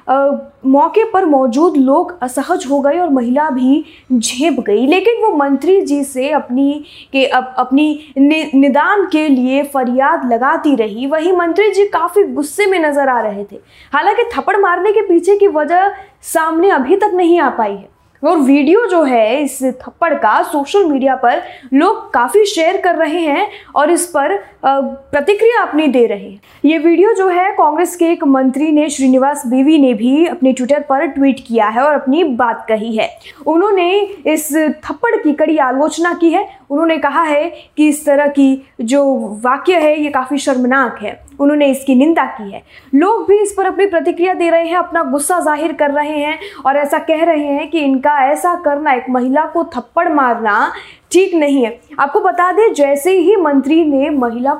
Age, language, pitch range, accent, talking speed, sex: 20-39, Hindi, 270-345 Hz, native, 185 wpm, female